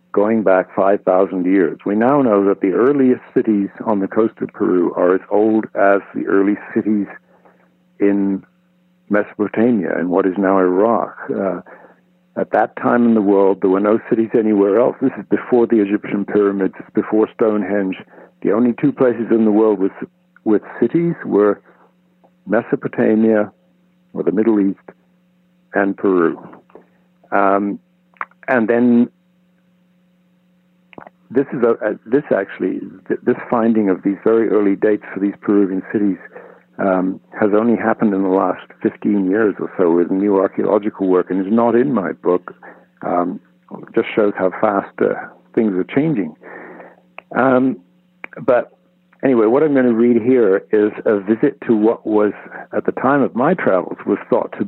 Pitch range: 100-130 Hz